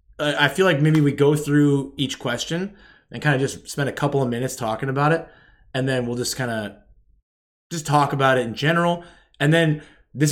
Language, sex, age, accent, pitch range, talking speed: English, male, 20-39, American, 110-150 Hz, 210 wpm